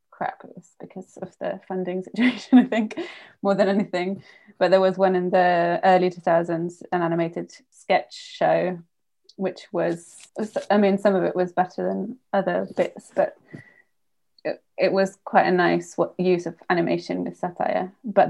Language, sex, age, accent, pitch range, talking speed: English, female, 20-39, British, 175-205 Hz, 155 wpm